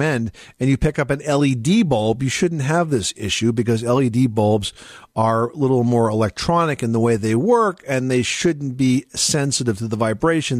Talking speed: 195 wpm